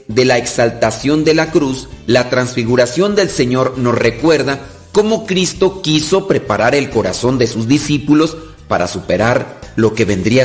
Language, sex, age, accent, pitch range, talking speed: Spanish, male, 40-59, Mexican, 120-170 Hz, 150 wpm